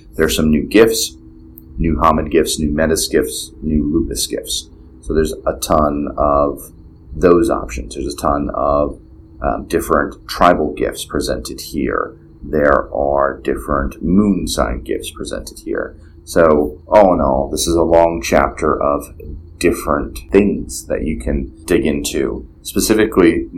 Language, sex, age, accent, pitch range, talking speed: English, male, 30-49, American, 70-85 Hz, 145 wpm